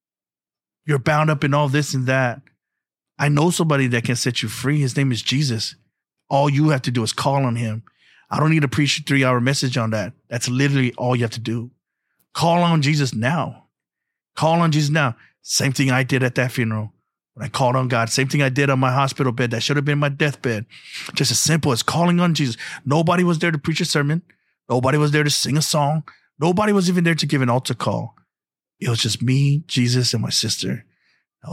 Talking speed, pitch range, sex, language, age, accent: 225 wpm, 125-150 Hz, male, English, 30-49, American